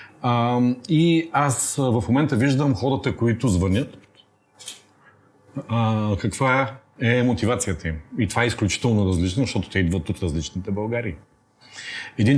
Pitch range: 100-125 Hz